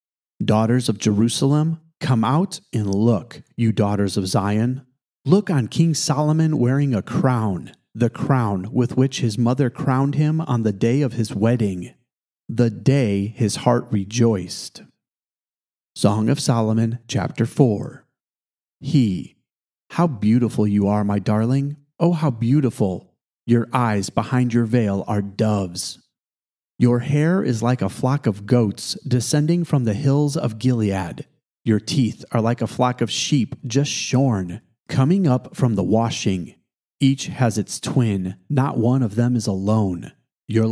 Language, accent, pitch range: English, American, 110-135 Hz